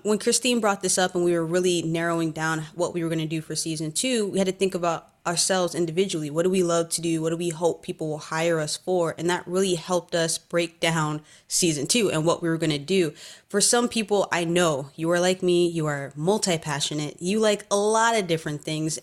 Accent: American